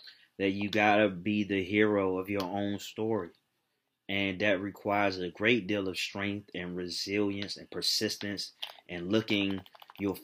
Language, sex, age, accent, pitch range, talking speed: English, male, 20-39, American, 95-105 Hz, 145 wpm